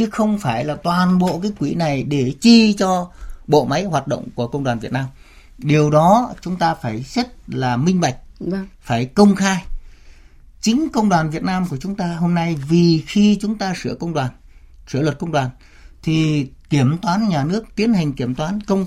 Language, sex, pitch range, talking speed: Vietnamese, male, 125-185 Hz, 200 wpm